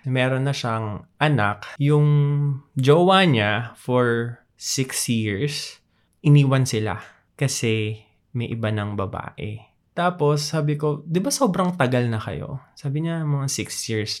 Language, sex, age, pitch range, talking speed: Filipino, male, 20-39, 110-145 Hz, 125 wpm